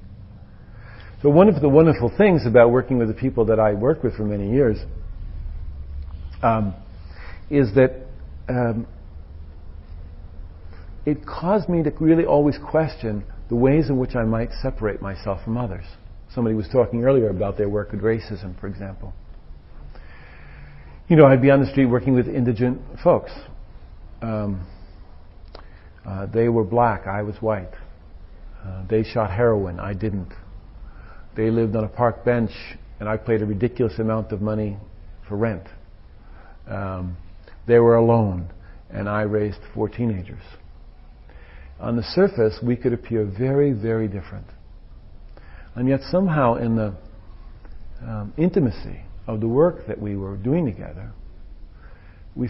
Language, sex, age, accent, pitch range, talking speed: English, male, 50-69, American, 90-120 Hz, 145 wpm